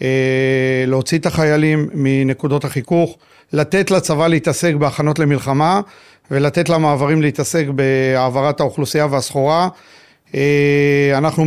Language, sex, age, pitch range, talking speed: Hebrew, male, 40-59, 135-155 Hz, 95 wpm